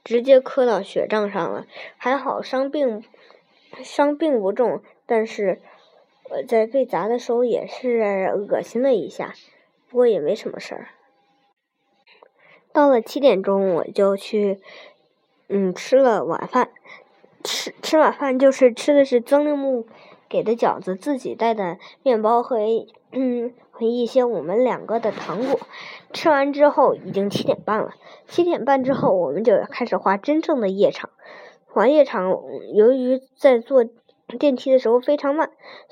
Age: 20-39